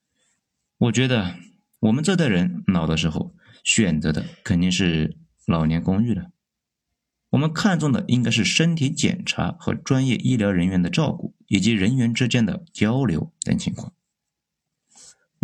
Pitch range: 100-170 Hz